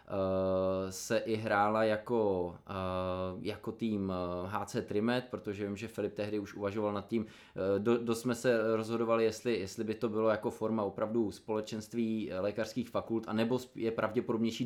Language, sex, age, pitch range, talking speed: Czech, male, 20-39, 105-120 Hz, 145 wpm